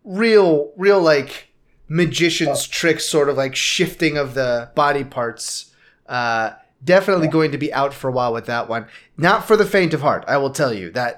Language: English